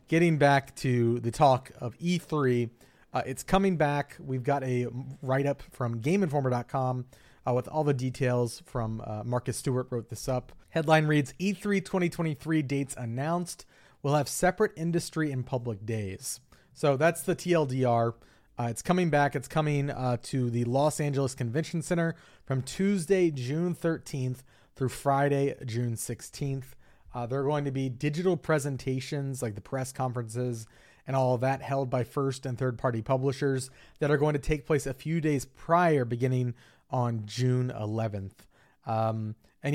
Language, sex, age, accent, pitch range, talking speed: English, male, 30-49, American, 125-155 Hz, 155 wpm